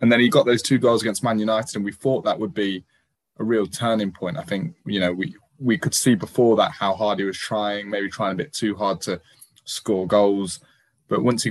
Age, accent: 10-29, British